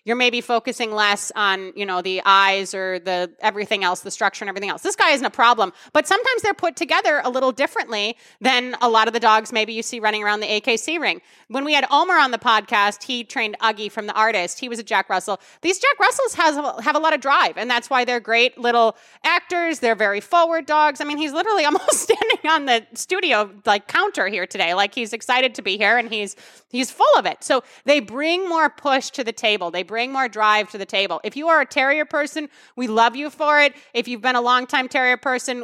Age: 30-49